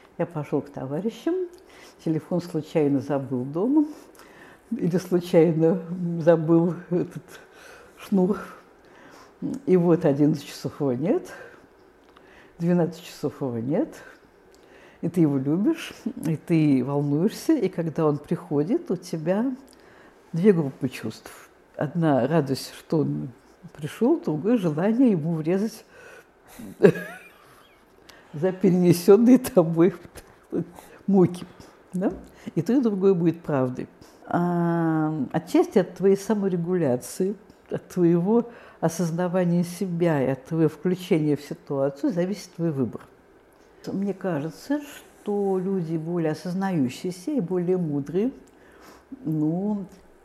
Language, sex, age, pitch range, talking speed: Russian, female, 60-79, 155-210 Hz, 105 wpm